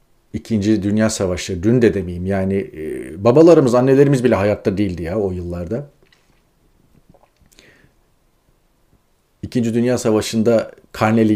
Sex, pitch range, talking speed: male, 95-130 Hz, 105 wpm